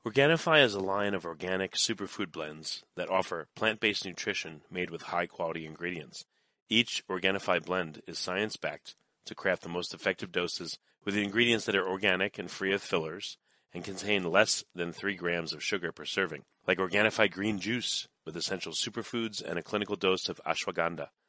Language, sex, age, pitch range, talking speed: English, male, 30-49, 85-105 Hz, 165 wpm